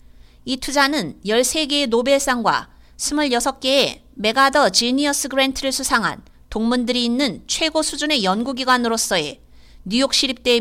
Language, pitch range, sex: Korean, 200-280 Hz, female